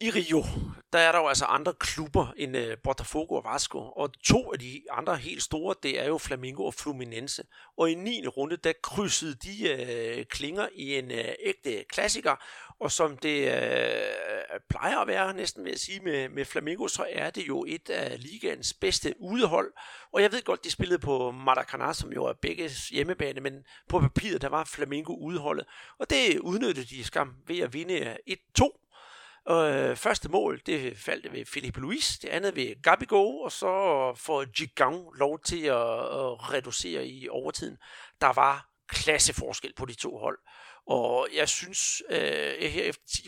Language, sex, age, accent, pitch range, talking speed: Danish, male, 60-79, native, 130-185 Hz, 180 wpm